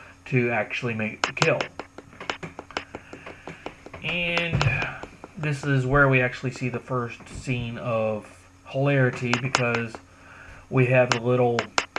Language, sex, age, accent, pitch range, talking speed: English, male, 30-49, American, 115-135 Hz, 110 wpm